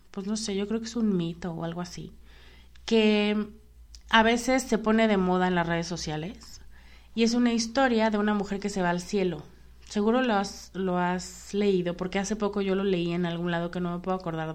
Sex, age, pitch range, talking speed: female, 30-49, 150-225 Hz, 225 wpm